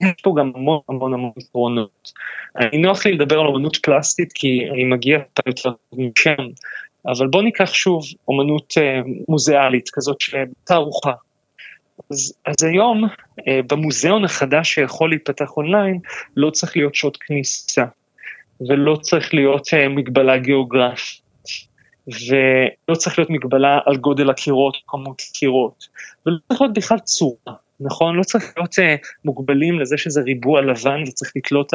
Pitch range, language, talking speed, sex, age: 135-165 Hz, Hebrew, 140 wpm, male, 20-39